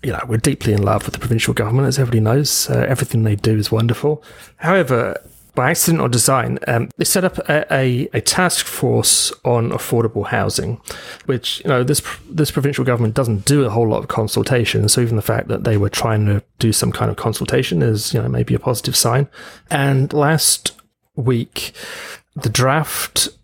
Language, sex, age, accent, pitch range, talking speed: English, male, 30-49, British, 115-135 Hz, 195 wpm